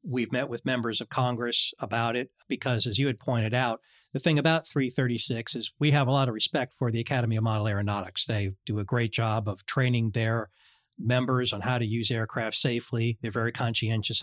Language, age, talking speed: English, 40-59, 205 wpm